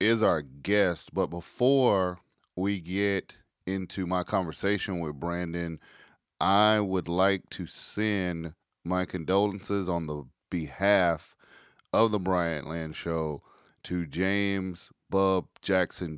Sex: male